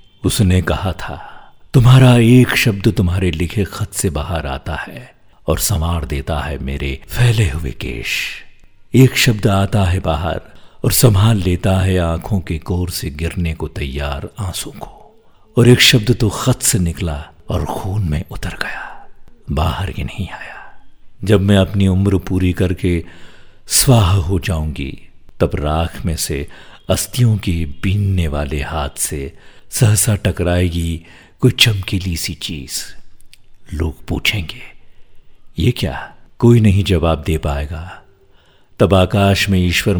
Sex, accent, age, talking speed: male, native, 50-69, 140 wpm